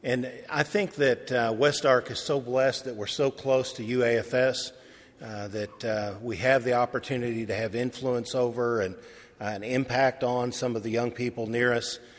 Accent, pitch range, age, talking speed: American, 110-130 Hz, 50-69, 190 wpm